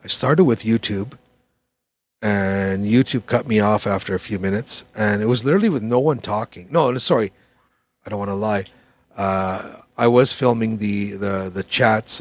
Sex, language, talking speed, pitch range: male, English, 175 wpm, 105-130 Hz